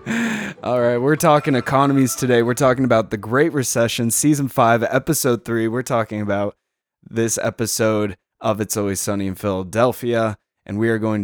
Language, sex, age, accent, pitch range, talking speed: English, male, 20-39, American, 100-120 Hz, 165 wpm